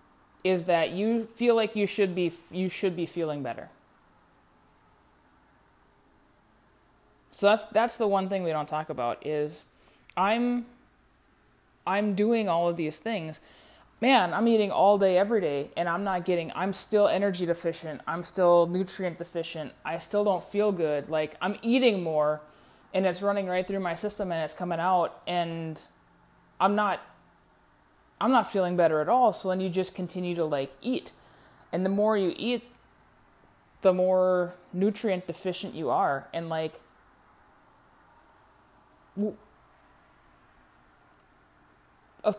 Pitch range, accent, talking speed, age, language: 165-205 Hz, American, 140 wpm, 20-39, English